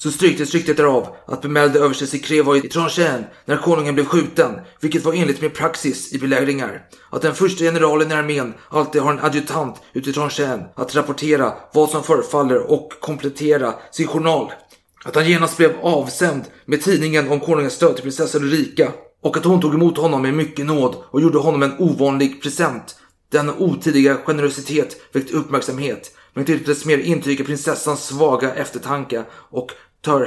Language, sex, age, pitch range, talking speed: Swedish, male, 30-49, 140-155 Hz, 175 wpm